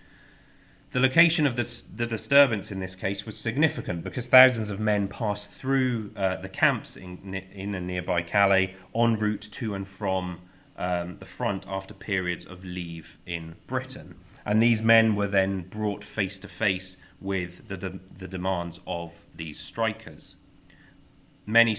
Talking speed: 155 wpm